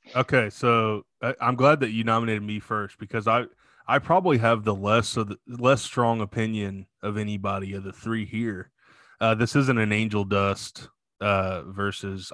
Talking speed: 170 wpm